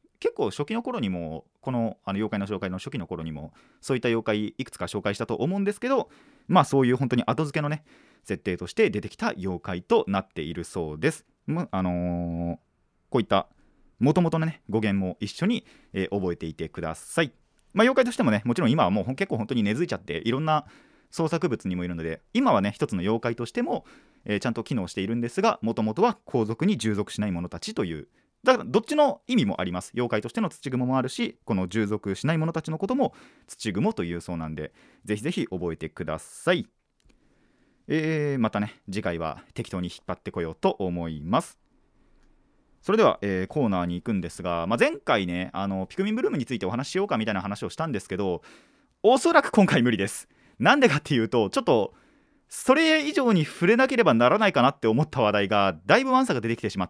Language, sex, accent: Japanese, male, native